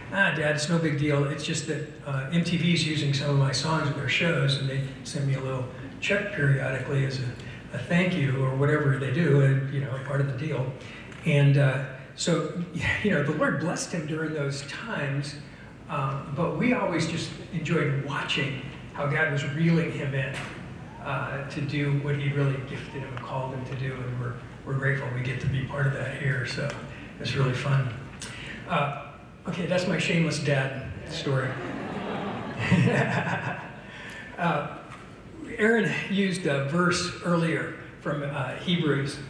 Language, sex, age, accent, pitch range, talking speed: English, male, 60-79, American, 135-160 Hz, 175 wpm